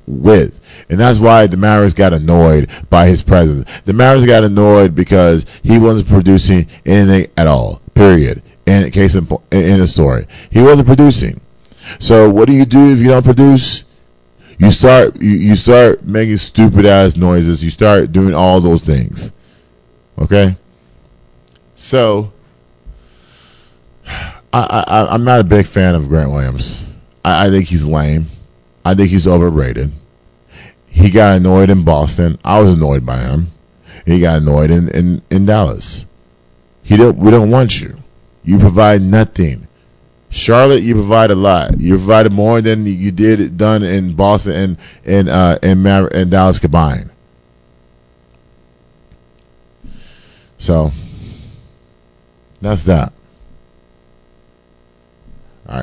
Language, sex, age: English, male, 40-59